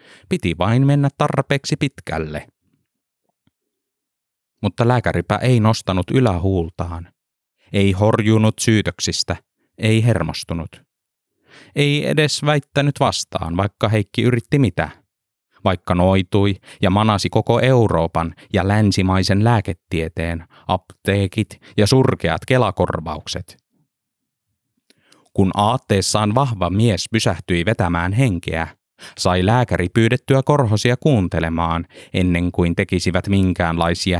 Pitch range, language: 90-115 Hz, Finnish